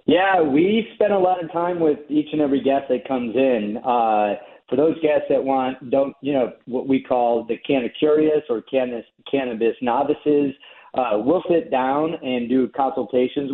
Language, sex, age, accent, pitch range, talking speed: English, male, 40-59, American, 120-140 Hz, 175 wpm